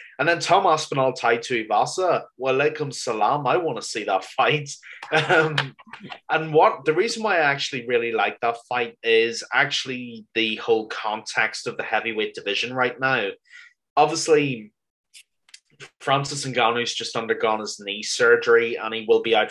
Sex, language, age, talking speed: male, English, 20-39, 160 wpm